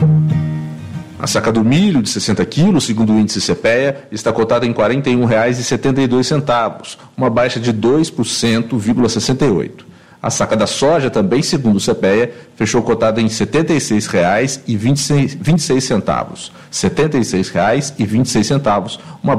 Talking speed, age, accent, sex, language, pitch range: 120 wpm, 40-59, Brazilian, male, English, 115-150 Hz